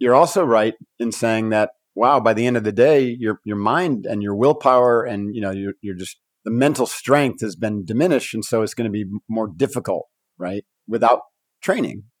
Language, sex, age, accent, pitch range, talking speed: English, male, 50-69, American, 105-125 Hz, 205 wpm